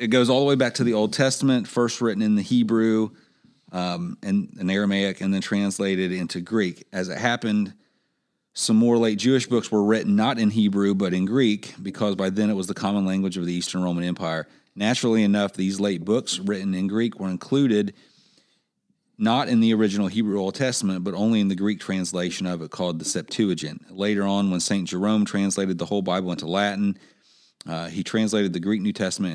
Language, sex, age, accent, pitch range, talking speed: English, male, 40-59, American, 90-110 Hz, 200 wpm